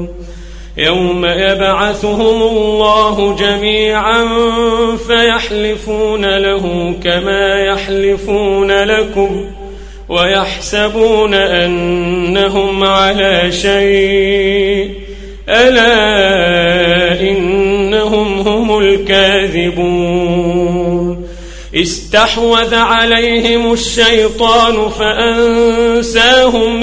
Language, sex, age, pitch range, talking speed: Arabic, male, 40-59, 180-215 Hz, 45 wpm